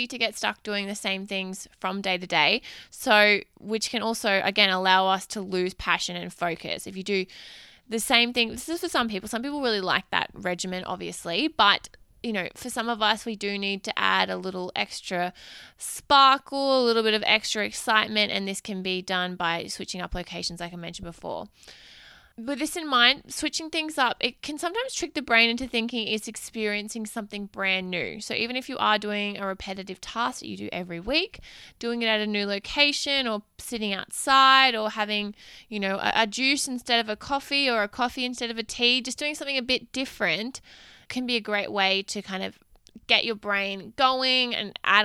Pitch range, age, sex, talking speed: 195-250 Hz, 20-39, female, 210 wpm